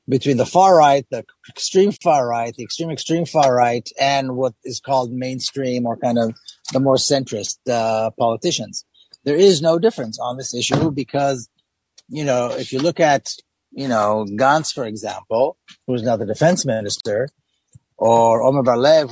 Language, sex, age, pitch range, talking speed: English, male, 30-49, 115-150 Hz, 170 wpm